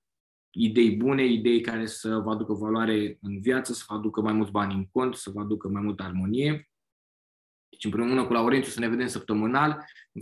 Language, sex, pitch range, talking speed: Romanian, male, 105-135 Hz, 200 wpm